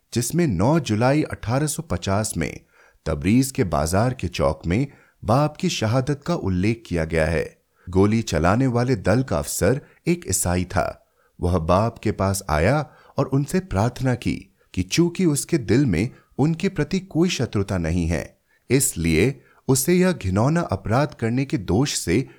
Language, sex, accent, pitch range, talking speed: Hindi, male, native, 95-145 Hz, 155 wpm